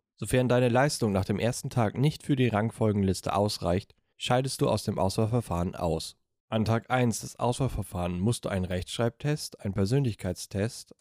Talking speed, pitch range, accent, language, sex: 160 wpm, 95-125 Hz, German, German, male